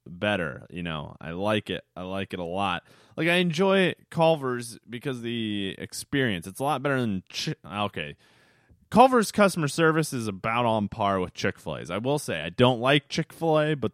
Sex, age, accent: male, 30-49, American